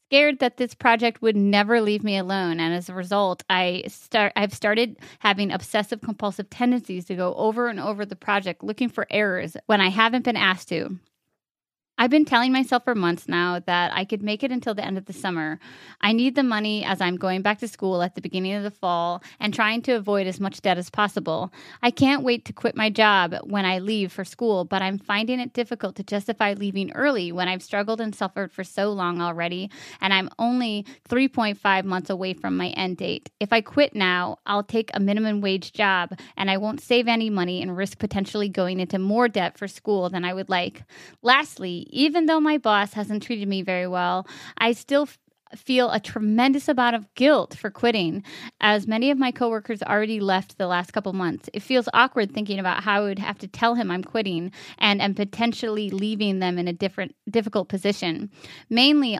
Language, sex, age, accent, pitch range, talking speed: English, female, 20-39, American, 185-230 Hz, 210 wpm